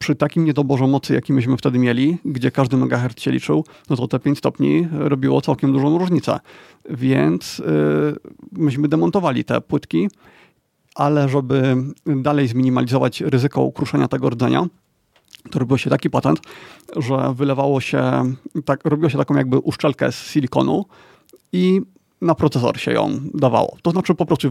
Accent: native